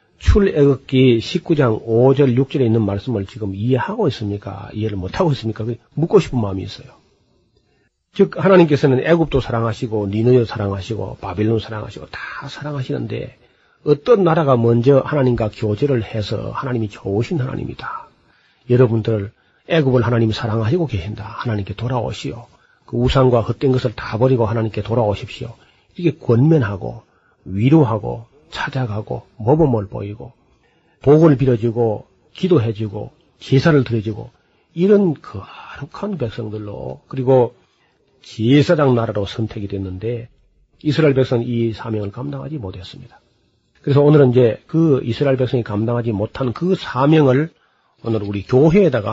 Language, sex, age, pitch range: Korean, male, 40-59, 110-140 Hz